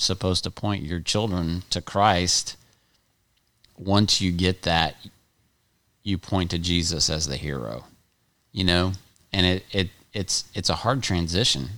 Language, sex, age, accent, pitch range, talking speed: English, male, 30-49, American, 85-105 Hz, 145 wpm